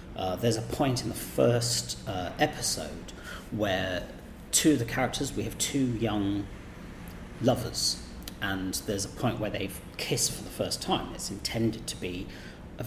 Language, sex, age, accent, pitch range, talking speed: English, male, 40-59, British, 95-125 Hz, 165 wpm